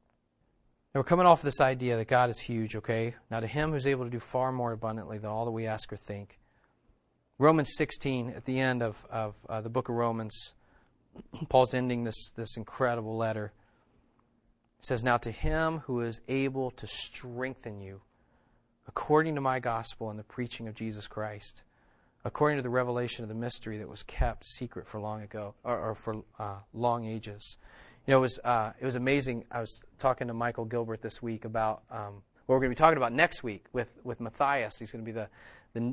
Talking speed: 200 wpm